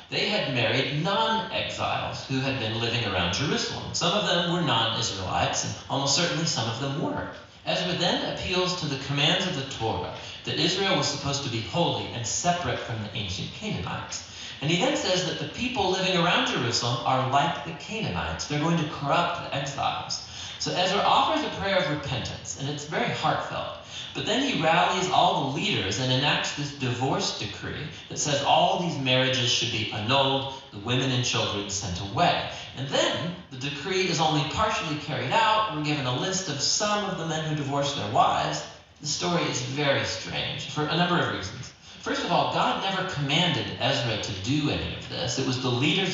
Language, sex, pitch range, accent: English, male, 120-170 Hz, American